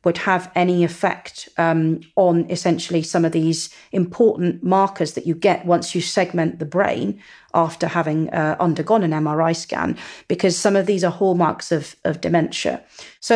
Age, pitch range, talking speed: 40-59, 165-185 Hz, 165 wpm